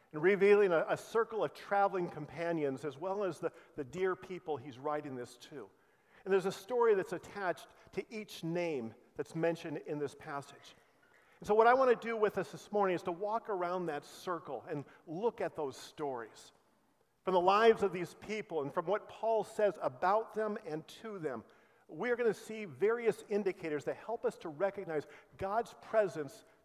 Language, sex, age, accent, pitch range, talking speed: English, male, 50-69, American, 160-210 Hz, 190 wpm